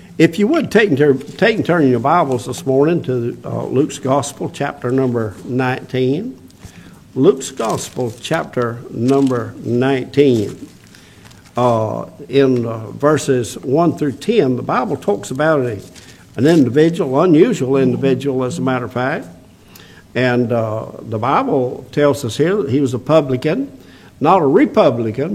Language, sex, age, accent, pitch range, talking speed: English, male, 60-79, American, 120-145 Hz, 145 wpm